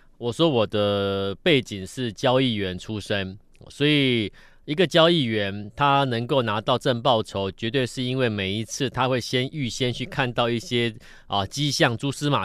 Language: Chinese